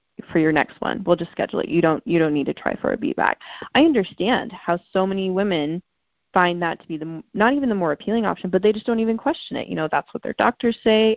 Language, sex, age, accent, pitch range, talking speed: English, female, 20-39, American, 160-185 Hz, 265 wpm